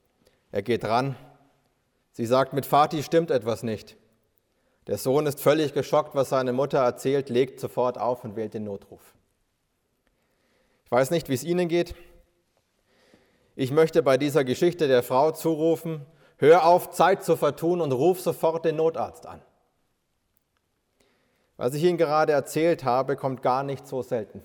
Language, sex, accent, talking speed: German, male, German, 155 wpm